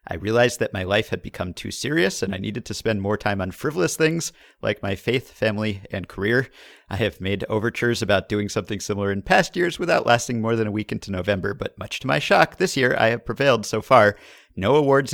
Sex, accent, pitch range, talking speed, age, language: male, American, 100-130 Hz, 230 wpm, 50-69, English